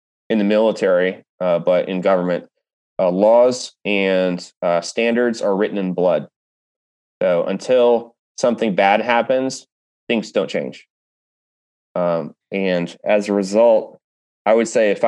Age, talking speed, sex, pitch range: 30-49, 130 wpm, male, 90-115 Hz